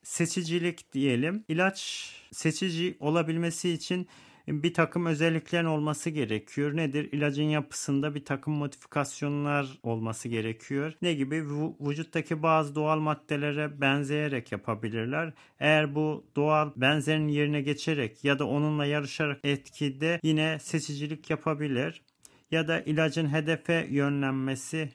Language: Turkish